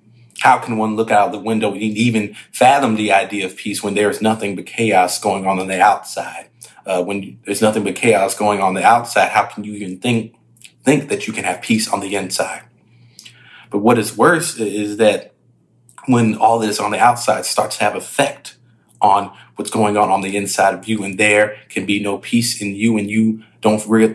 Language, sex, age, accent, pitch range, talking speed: English, male, 30-49, American, 100-115 Hz, 215 wpm